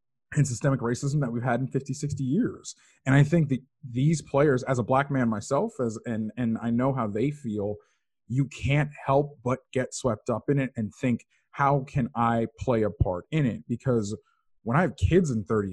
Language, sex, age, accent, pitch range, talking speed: English, male, 20-39, American, 110-140 Hz, 210 wpm